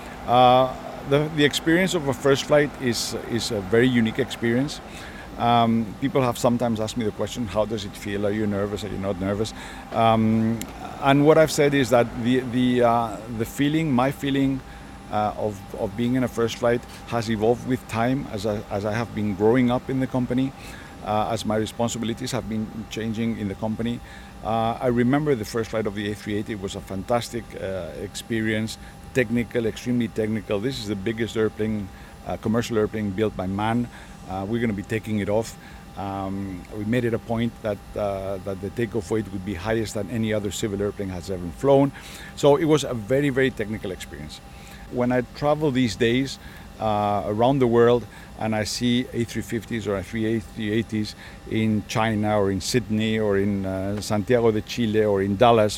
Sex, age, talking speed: male, 50-69, 190 wpm